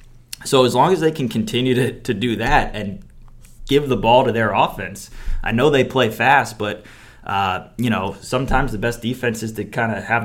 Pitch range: 100-120 Hz